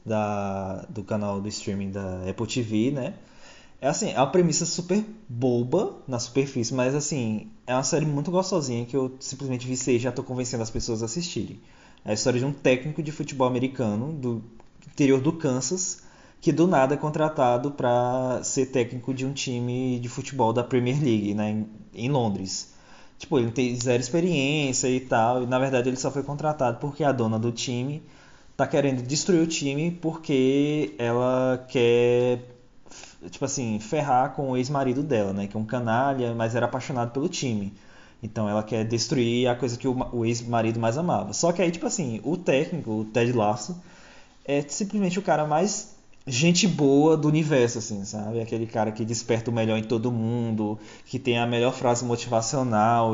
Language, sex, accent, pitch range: Portuguese, male, Brazilian, 115-145 Hz